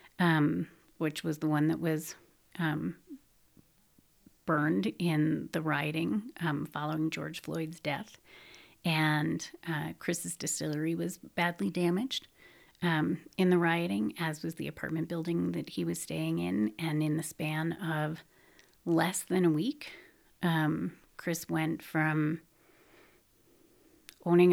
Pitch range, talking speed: 155-175 Hz, 125 wpm